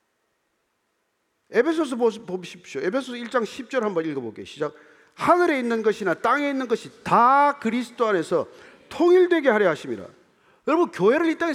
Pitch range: 225-295 Hz